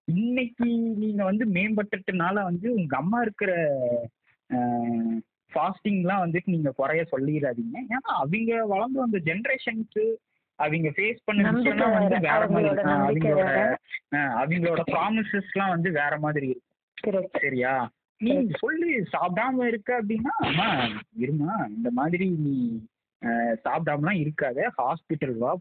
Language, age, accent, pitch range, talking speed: Tamil, 20-39, native, 145-210 Hz, 85 wpm